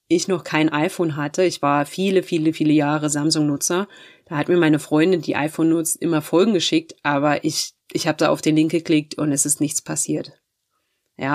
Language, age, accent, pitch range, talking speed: German, 30-49, German, 150-170 Hz, 200 wpm